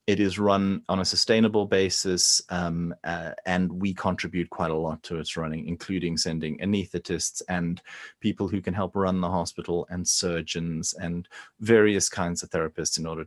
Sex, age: male, 30-49